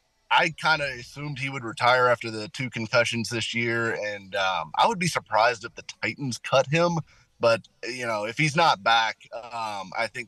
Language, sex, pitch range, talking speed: English, male, 110-145 Hz, 200 wpm